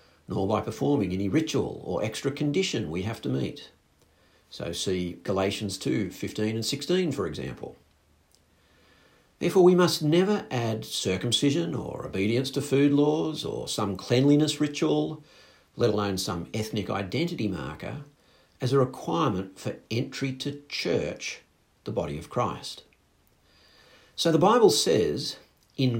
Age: 50-69